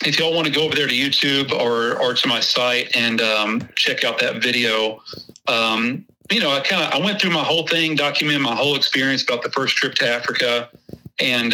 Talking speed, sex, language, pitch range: 225 wpm, male, English, 115-140 Hz